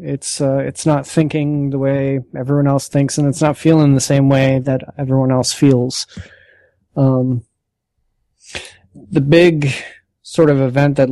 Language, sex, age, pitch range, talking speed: English, male, 30-49, 130-145 Hz, 150 wpm